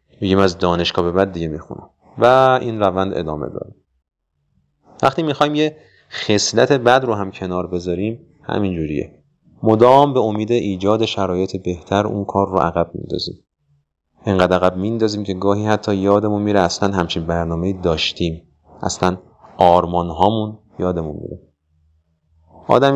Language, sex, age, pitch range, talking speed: Persian, male, 30-49, 90-115 Hz, 135 wpm